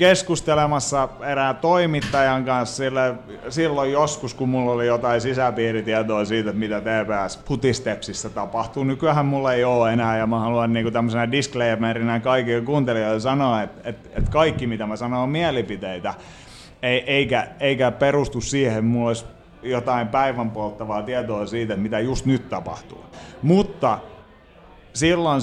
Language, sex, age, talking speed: Finnish, male, 30-49, 140 wpm